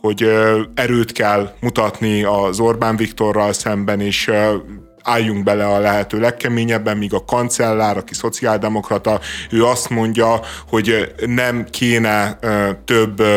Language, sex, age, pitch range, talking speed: Hungarian, male, 30-49, 105-120 Hz, 115 wpm